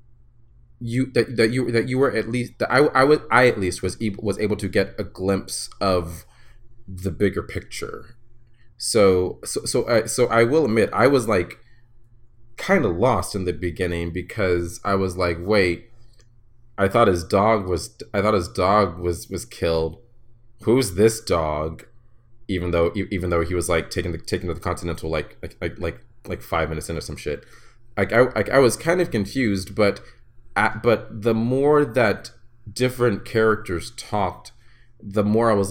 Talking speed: 185 wpm